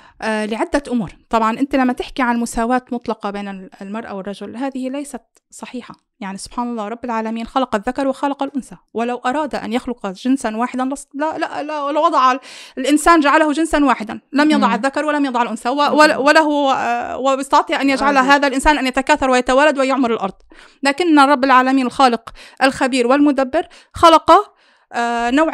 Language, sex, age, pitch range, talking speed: Arabic, female, 30-49, 225-280 Hz, 155 wpm